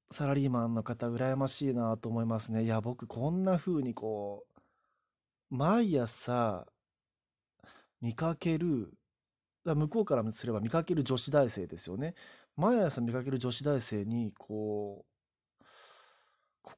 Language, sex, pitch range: Japanese, male, 110-160 Hz